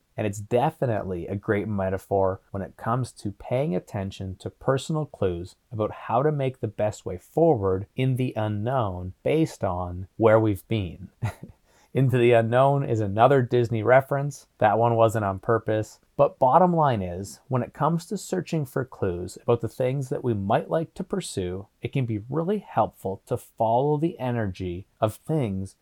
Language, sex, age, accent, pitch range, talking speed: English, male, 30-49, American, 100-130 Hz, 170 wpm